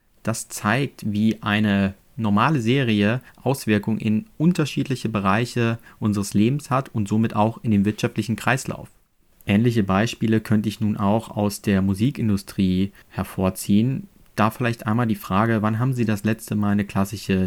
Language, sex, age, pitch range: German, male, 30-49, 100-115 Hz